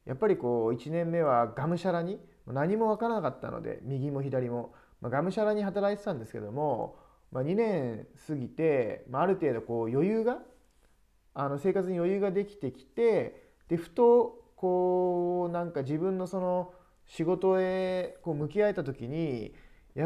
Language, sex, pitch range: Japanese, male, 125-195 Hz